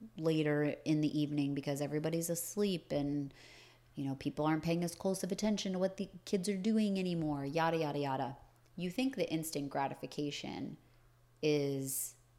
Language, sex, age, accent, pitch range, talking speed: English, female, 30-49, American, 140-195 Hz, 160 wpm